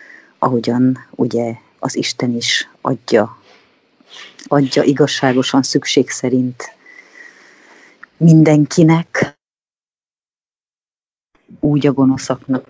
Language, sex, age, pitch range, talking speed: English, female, 30-49, 125-140 Hz, 65 wpm